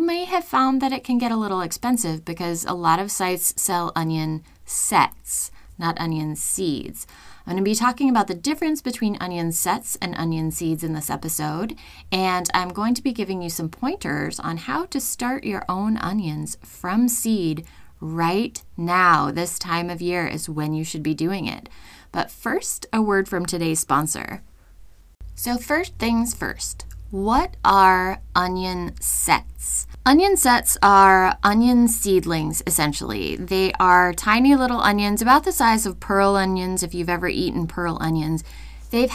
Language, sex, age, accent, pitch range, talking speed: English, female, 20-39, American, 165-230 Hz, 165 wpm